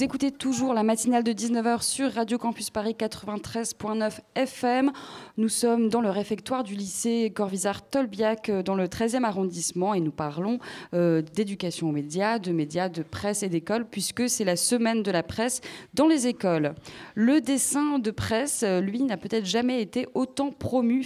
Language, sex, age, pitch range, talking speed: French, female, 20-39, 185-245 Hz, 170 wpm